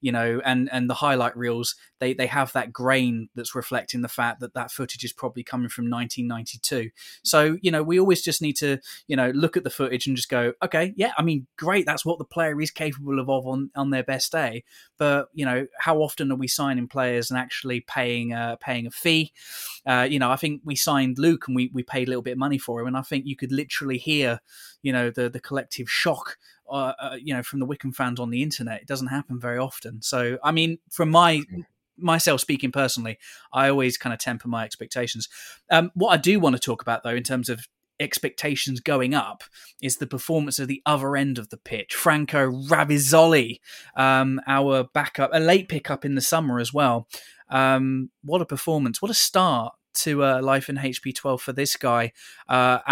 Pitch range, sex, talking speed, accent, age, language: 125-150 Hz, male, 220 wpm, British, 20-39, English